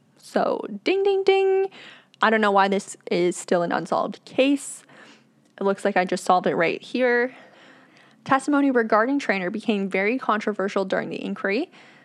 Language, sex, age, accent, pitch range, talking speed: English, female, 10-29, American, 190-235 Hz, 160 wpm